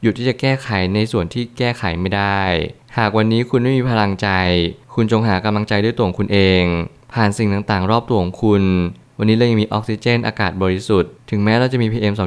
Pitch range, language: 100-115 Hz, Thai